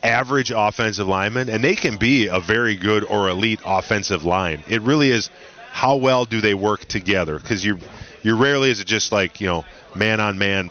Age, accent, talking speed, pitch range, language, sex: 30-49, American, 200 wpm, 100-130 Hz, English, male